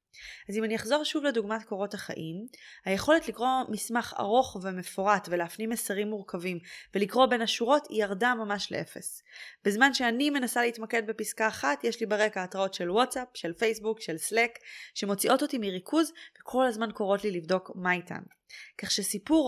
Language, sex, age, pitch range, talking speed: Hebrew, female, 20-39, 195-240 Hz, 155 wpm